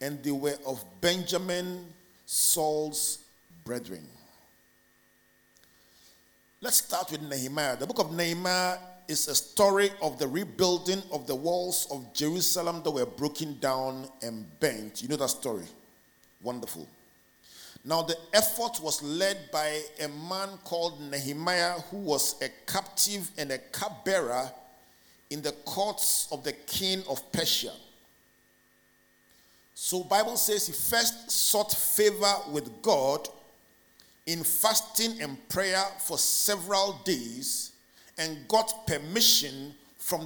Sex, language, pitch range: male, English, 150-205 Hz